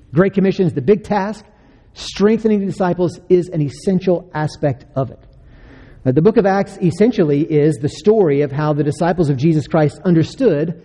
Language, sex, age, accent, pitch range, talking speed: English, male, 40-59, American, 140-185 Hz, 170 wpm